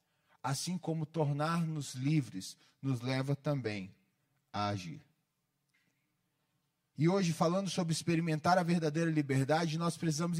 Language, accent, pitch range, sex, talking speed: Portuguese, Brazilian, 150-195 Hz, male, 110 wpm